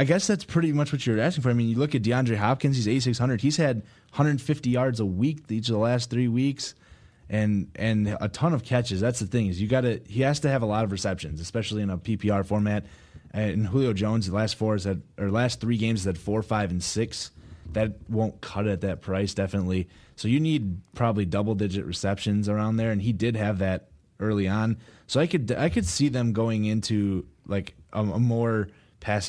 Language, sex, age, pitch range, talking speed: English, male, 20-39, 95-115 Hz, 225 wpm